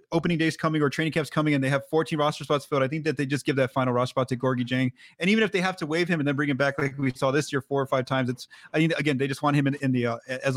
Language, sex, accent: English, male, American